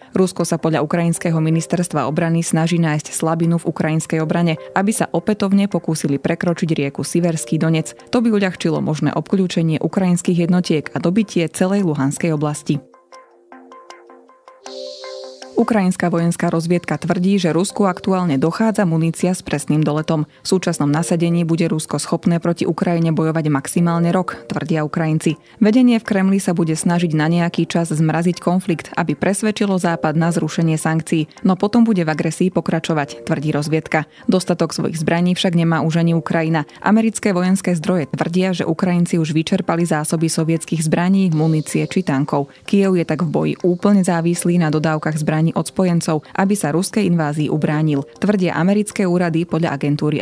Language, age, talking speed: Slovak, 20-39, 150 wpm